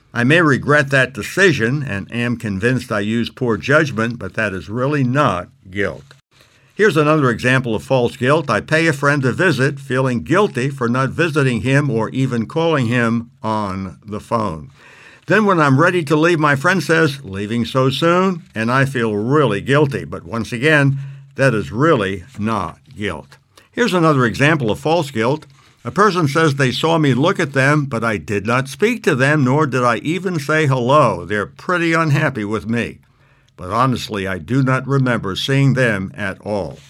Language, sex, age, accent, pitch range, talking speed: English, male, 60-79, American, 115-155 Hz, 180 wpm